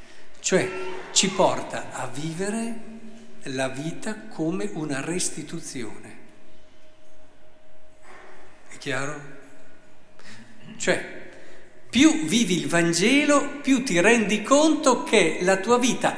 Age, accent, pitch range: 50-69, native, 135-225 Hz